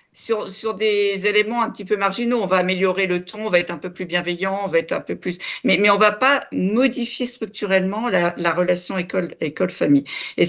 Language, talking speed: French, 230 wpm